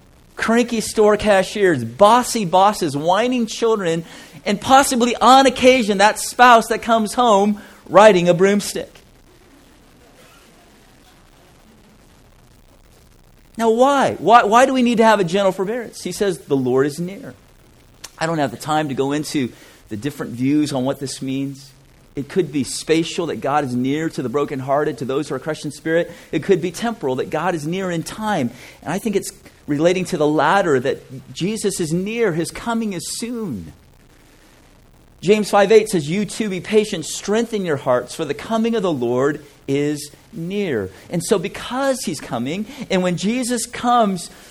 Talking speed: 165 wpm